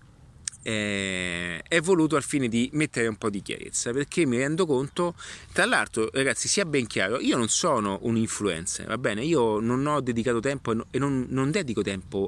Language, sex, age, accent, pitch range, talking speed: Italian, male, 30-49, native, 100-135 Hz, 185 wpm